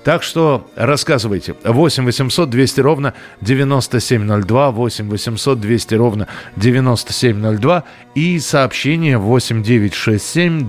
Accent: native